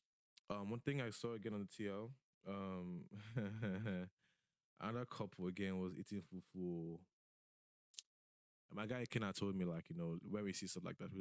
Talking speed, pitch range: 170 wpm, 85-110 Hz